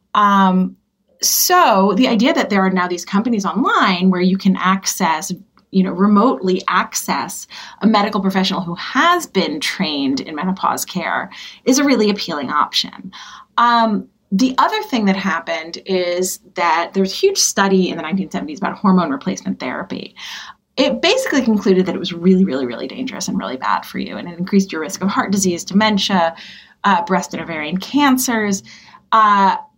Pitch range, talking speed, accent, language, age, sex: 185-230 Hz, 165 wpm, American, English, 30-49, female